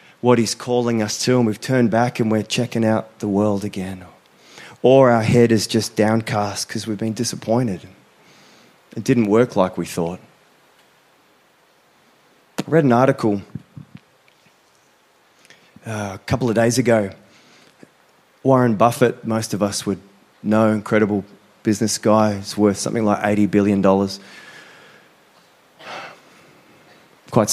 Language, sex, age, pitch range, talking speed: English, male, 20-39, 100-115 Hz, 130 wpm